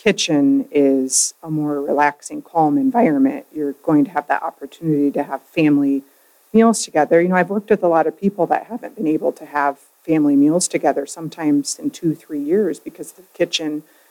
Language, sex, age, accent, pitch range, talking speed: English, female, 40-59, American, 145-180 Hz, 185 wpm